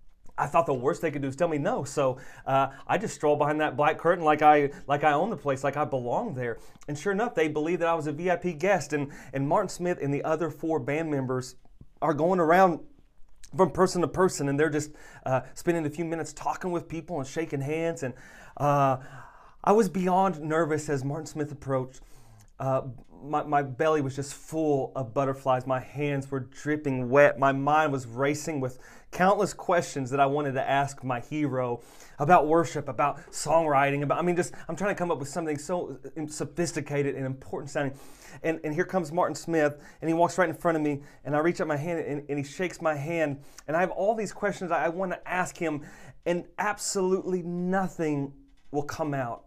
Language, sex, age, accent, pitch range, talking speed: English, male, 30-49, American, 140-170 Hz, 210 wpm